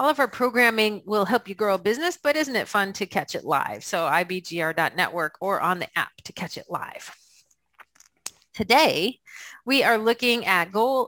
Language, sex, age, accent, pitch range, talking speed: English, female, 40-59, American, 195-240 Hz, 185 wpm